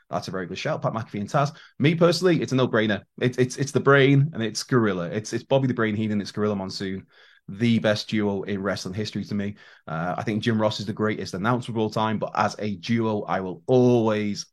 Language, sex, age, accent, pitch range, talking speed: English, male, 20-39, British, 105-140 Hz, 245 wpm